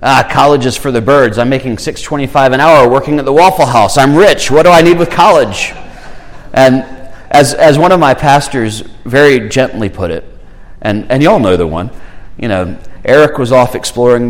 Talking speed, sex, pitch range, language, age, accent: 205 wpm, male, 100-130 Hz, English, 40-59, American